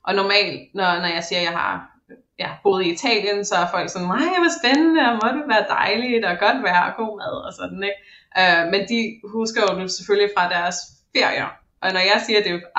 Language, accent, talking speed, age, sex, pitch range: Danish, native, 245 wpm, 20-39, female, 175-210 Hz